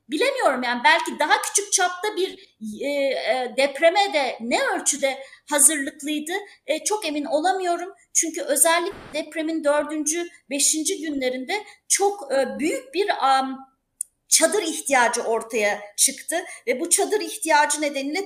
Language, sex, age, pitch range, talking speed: Turkish, female, 40-59, 280-370 Hz, 125 wpm